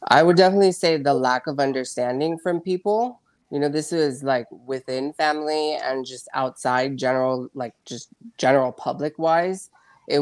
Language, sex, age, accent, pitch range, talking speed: English, female, 20-39, American, 125-150 Hz, 160 wpm